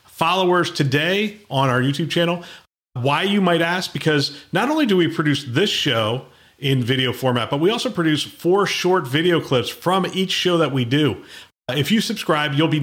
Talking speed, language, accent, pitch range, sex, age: 185 wpm, English, American, 125-170 Hz, male, 40-59